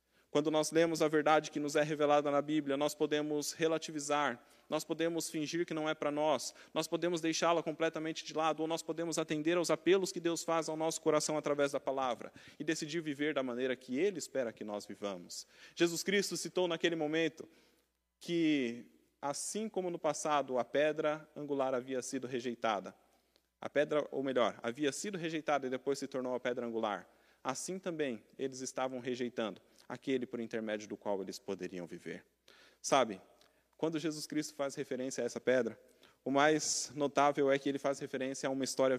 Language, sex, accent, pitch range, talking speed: Portuguese, male, Brazilian, 130-160 Hz, 180 wpm